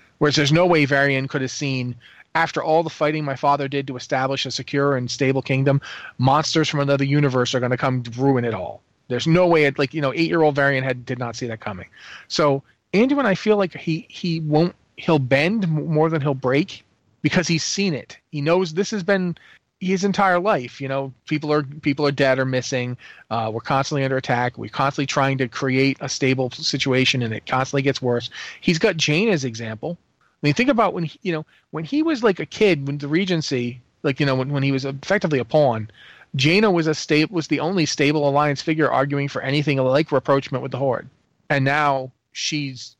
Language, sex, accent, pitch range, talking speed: English, male, American, 130-160 Hz, 220 wpm